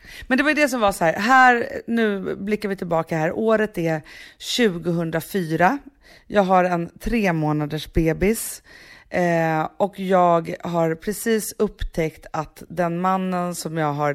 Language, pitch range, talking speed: English, 160-210 Hz, 150 wpm